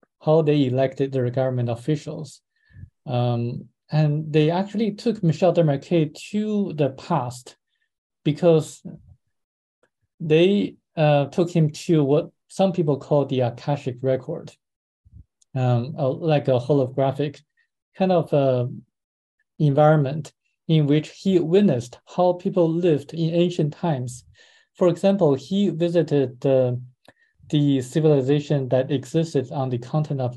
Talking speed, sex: 120 wpm, male